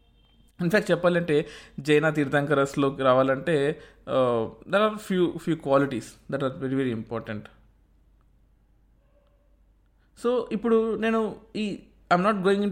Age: 20-39